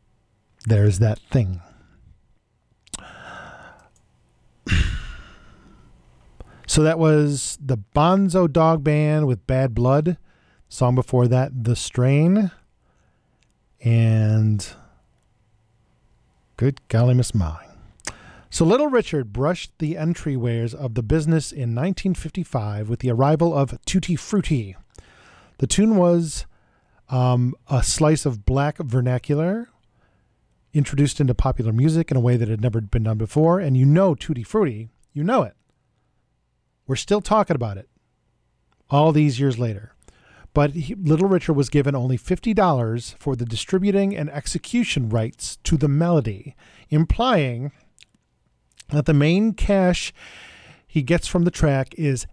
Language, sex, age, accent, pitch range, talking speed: English, male, 40-59, American, 120-165 Hz, 125 wpm